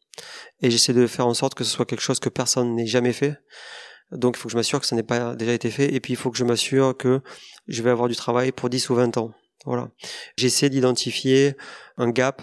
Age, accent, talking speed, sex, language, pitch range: 30-49, French, 250 wpm, male, French, 120-130 Hz